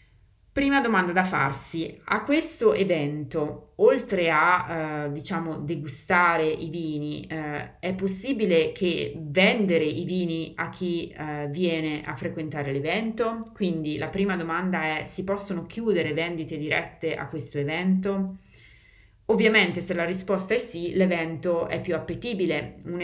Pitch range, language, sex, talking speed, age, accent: 155-190 Hz, Italian, female, 135 wpm, 30-49, native